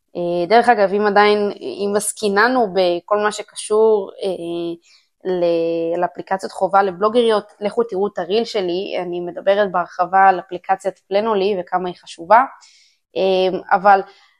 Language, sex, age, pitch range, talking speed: Hebrew, female, 20-39, 190-235 Hz, 115 wpm